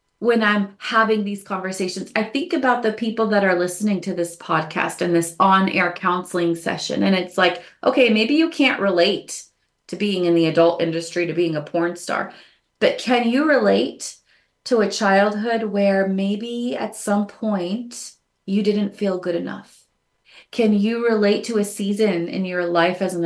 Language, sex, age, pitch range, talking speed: English, female, 30-49, 175-210 Hz, 175 wpm